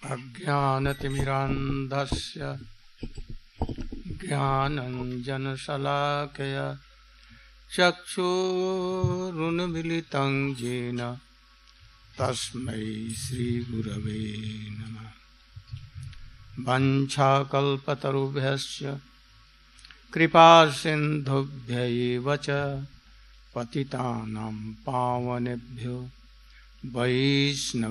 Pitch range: 120-155 Hz